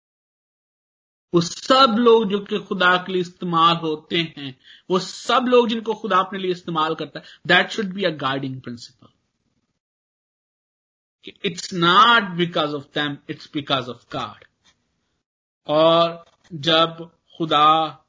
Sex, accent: male, native